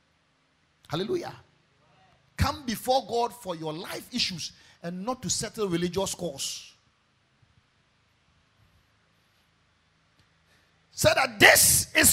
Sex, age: male, 50-69